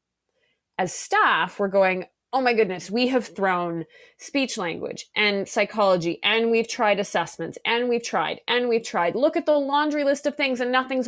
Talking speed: 180 wpm